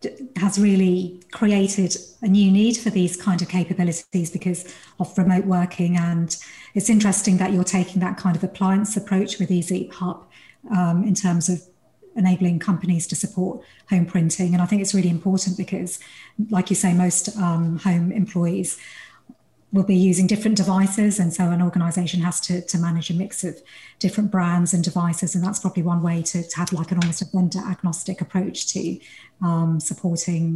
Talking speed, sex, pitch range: 175 wpm, female, 175-190 Hz